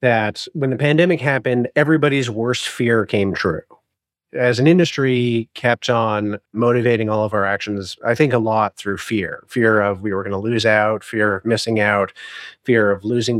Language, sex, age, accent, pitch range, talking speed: English, male, 30-49, American, 110-145 Hz, 180 wpm